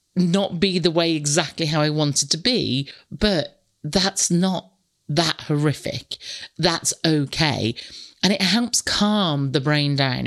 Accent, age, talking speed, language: British, 40-59, 140 wpm, English